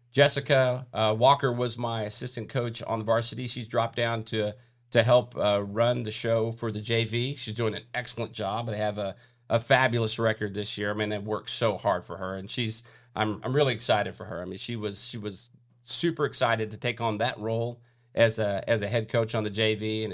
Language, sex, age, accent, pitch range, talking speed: English, male, 40-59, American, 110-125 Hz, 225 wpm